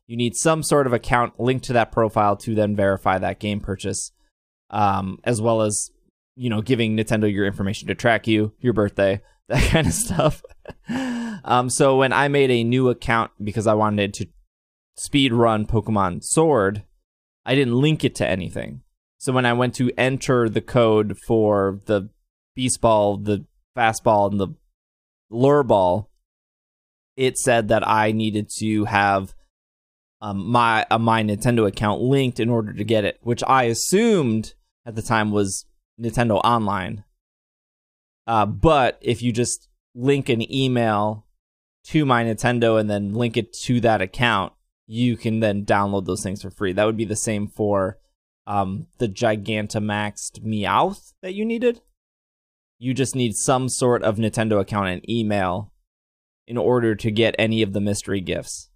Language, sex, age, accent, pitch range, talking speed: English, male, 20-39, American, 100-120 Hz, 165 wpm